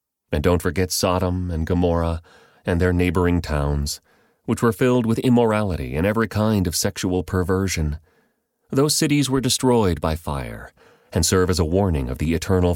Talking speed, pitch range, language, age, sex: 165 wpm, 80-110 Hz, English, 30-49, male